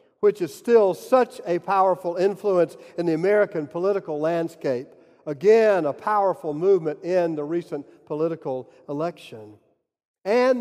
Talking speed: 125 wpm